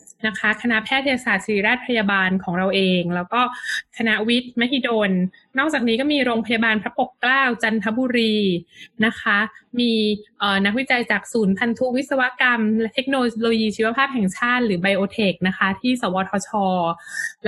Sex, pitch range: female, 200-255 Hz